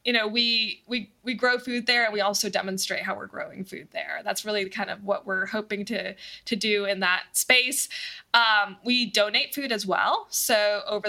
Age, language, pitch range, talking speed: 20-39, English, 195-235 Hz, 205 wpm